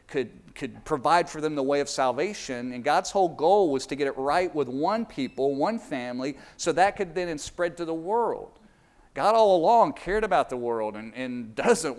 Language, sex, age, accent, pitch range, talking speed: English, male, 50-69, American, 135-185 Hz, 205 wpm